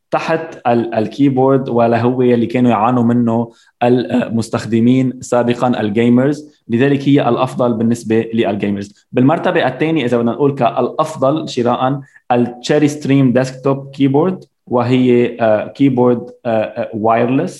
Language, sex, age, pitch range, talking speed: Arabic, male, 20-39, 115-130 Hz, 125 wpm